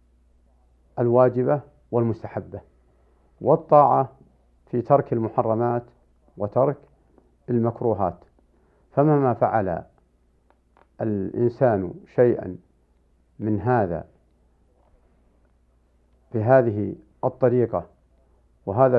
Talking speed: 55 wpm